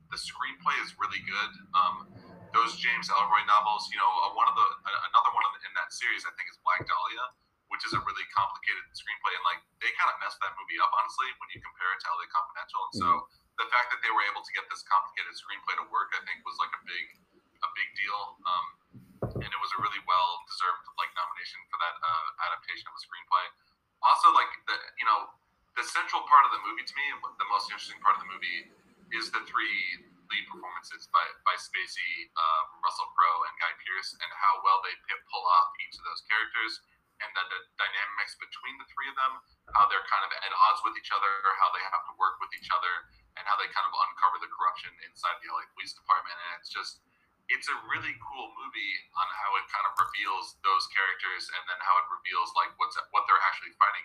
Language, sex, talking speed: English, male, 220 wpm